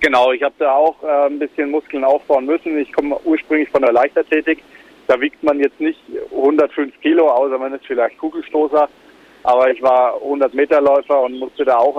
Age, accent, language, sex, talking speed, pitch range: 40-59, German, German, male, 185 wpm, 125-150 Hz